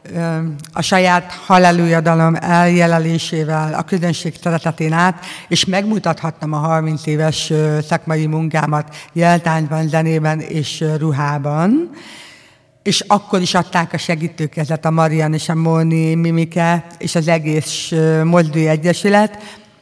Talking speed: 110 wpm